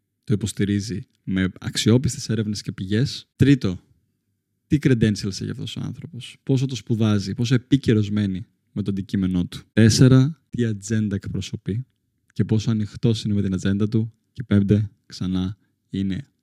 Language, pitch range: Greek, 100-120 Hz